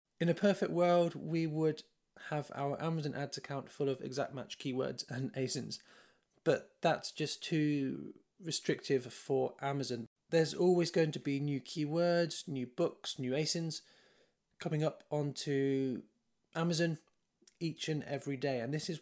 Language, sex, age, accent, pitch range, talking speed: English, male, 20-39, British, 135-165 Hz, 150 wpm